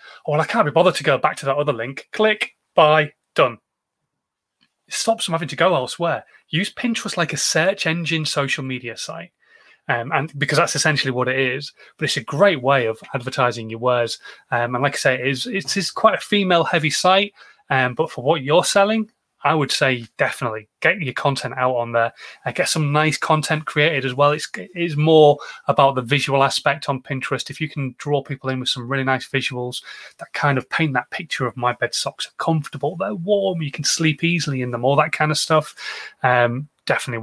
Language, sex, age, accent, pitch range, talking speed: English, male, 30-49, British, 130-170 Hz, 210 wpm